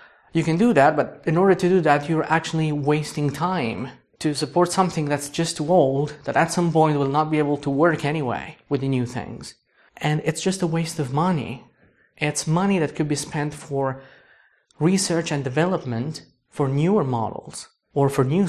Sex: male